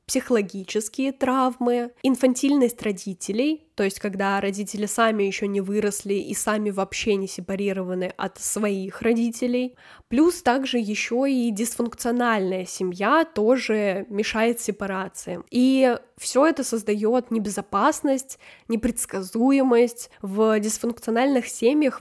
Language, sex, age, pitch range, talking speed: Russian, female, 10-29, 210-250 Hz, 105 wpm